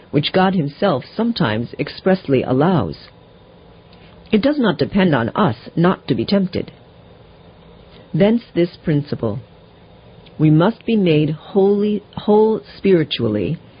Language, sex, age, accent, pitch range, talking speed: English, female, 50-69, American, 140-195 Hz, 110 wpm